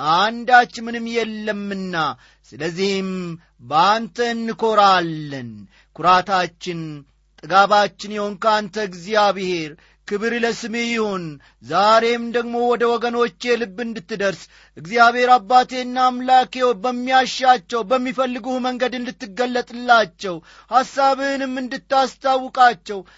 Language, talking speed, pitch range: Amharic, 75 wpm, 165-230 Hz